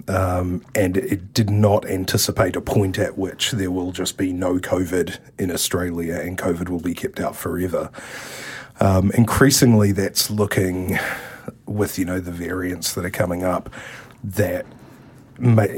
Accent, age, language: Australian, 30-49, English